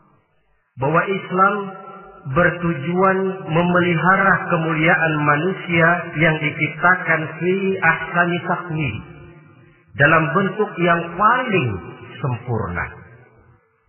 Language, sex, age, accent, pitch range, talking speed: Indonesian, male, 40-59, native, 155-180 Hz, 75 wpm